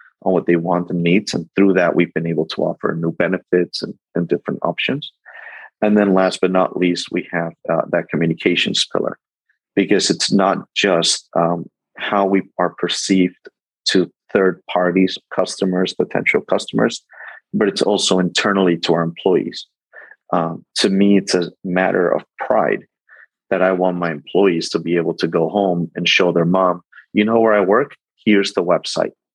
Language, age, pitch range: English, 30-49, 90-100 Hz